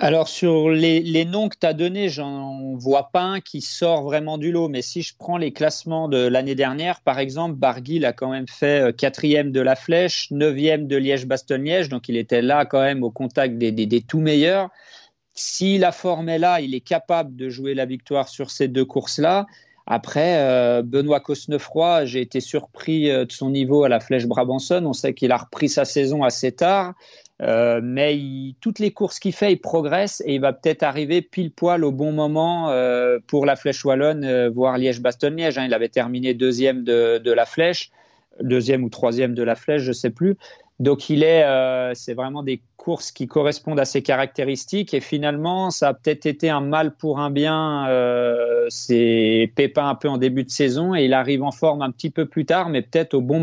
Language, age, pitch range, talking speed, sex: French, 40-59, 130-160 Hz, 210 wpm, male